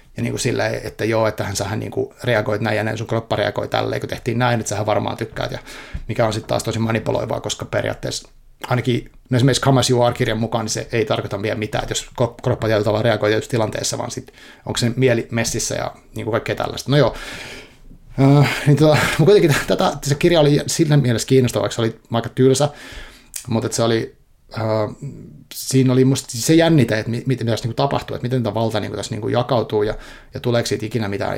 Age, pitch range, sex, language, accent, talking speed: 30-49, 110-130 Hz, male, Finnish, native, 210 wpm